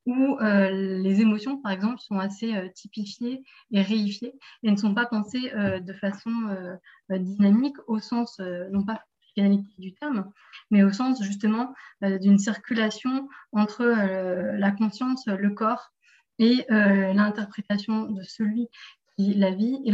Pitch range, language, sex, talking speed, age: 200-250 Hz, French, female, 155 wpm, 20-39